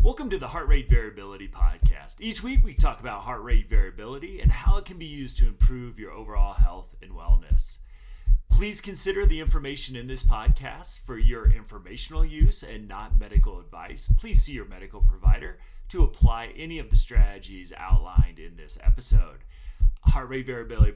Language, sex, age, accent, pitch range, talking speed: English, male, 30-49, American, 135-220 Hz, 175 wpm